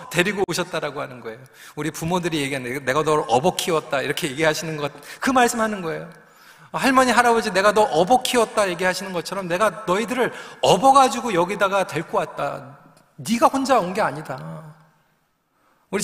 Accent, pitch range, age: native, 180-250 Hz, 40-59